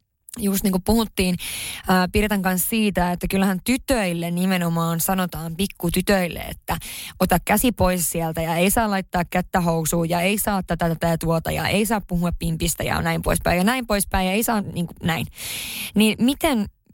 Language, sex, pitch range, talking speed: Finnish, female, 175-210 Hz, 175 wpm